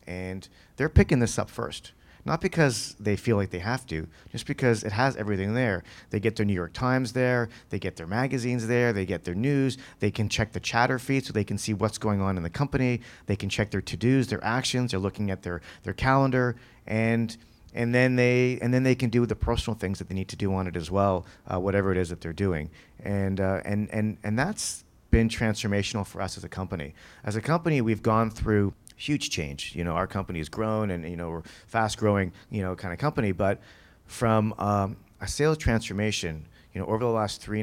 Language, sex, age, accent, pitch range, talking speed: Italian, male, 40-59, American, 95-120 Hz, 230 wpm